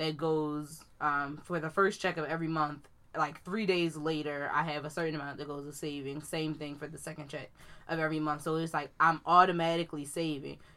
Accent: American